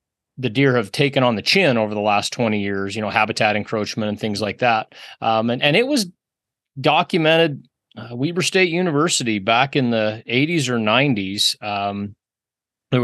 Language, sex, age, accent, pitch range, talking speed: English, male, 30-49, American, 110-145 Hz, 175 wpm